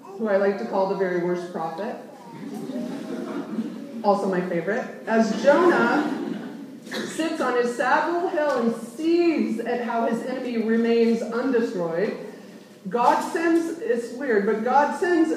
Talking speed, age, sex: 135 wpm, 30-49, female